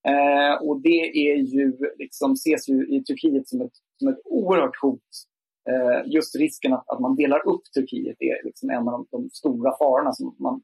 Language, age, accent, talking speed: Swedish, 30-49, native, 195 wpm